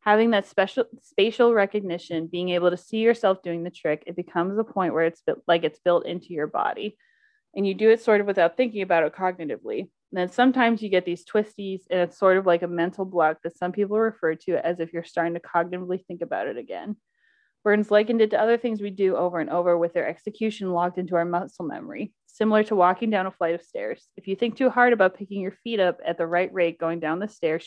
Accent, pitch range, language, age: American, 170-210 Hz, English, 20-39